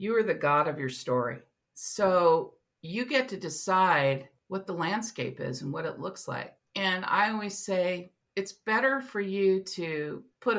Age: 50-69